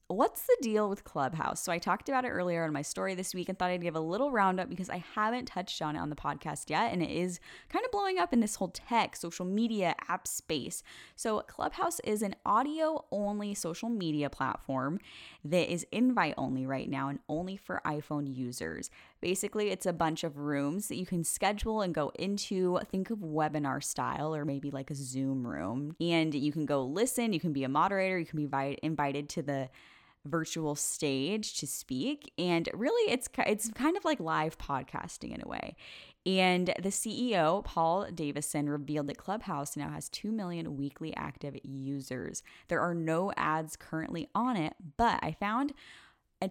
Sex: female